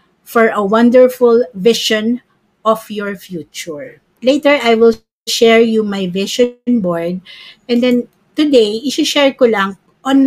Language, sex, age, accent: Filipino, female, 50-69, native